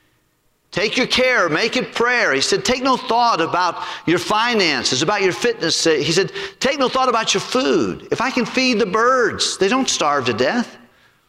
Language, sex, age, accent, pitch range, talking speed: English, male, 50-69, American, 135-210 Hz, 190 wpm